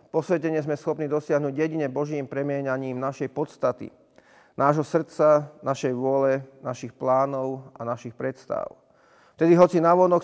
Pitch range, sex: 135-160 Hz, male